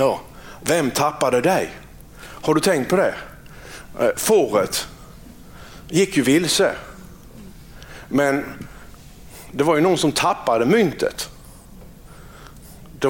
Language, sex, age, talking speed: Swedish, male, 60-79, 100 wpm